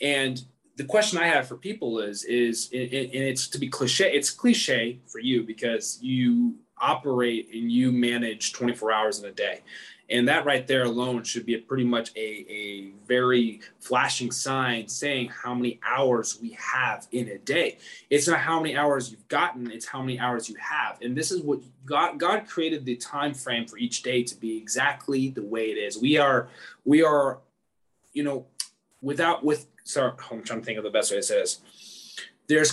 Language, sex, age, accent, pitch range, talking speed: English, male, 20-39, American, 120-155 Hz, 200 wpm